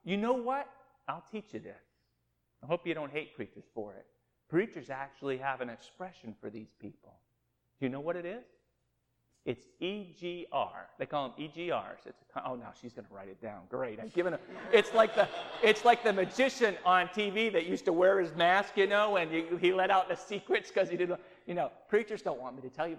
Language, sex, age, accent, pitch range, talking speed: English, male, 40-59, American, 135-195 Hz, 220 wpm